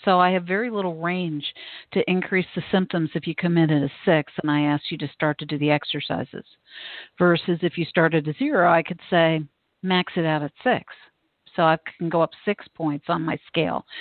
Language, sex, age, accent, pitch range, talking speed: English, female, 50-69, American, 155-180 Hz, 225 wpm